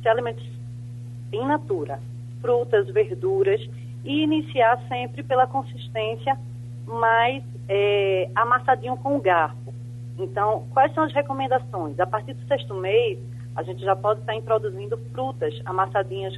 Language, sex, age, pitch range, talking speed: Portuguese, female, 30-49, 120-195 Hz, 130 wpm